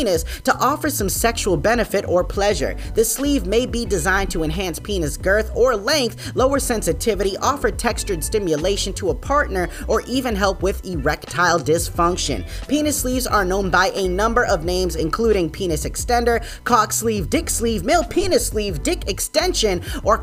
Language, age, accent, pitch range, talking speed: English, 20-39, American, 175-255 Hz, 160 wpm